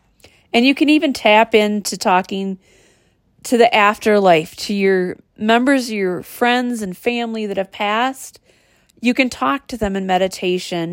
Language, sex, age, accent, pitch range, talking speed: English, female, 40-59, American, 175-225 Hz, 150 wpm